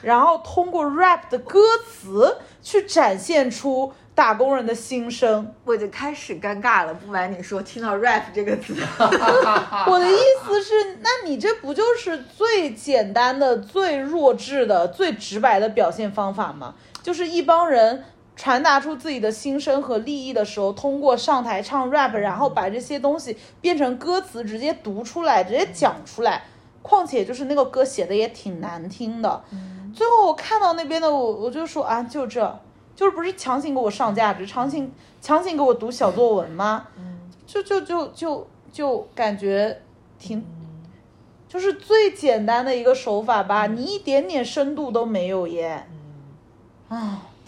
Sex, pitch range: female, 215-340 Hz